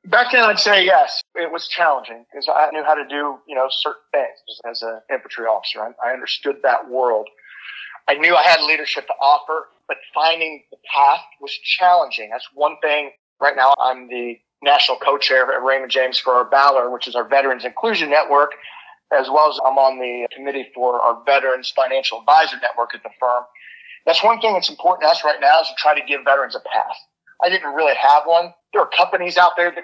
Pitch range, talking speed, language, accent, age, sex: 130-160 Hz, 210 wpm, English, American, 30-49, male